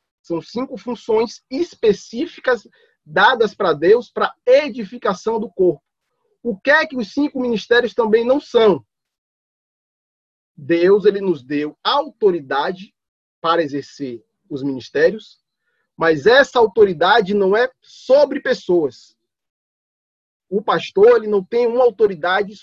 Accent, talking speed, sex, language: Brazilian, 110 wpm, male, Portuguese